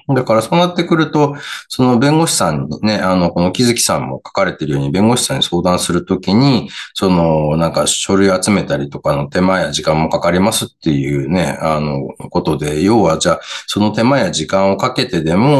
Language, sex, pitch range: Japanese, male, 80-115 Hz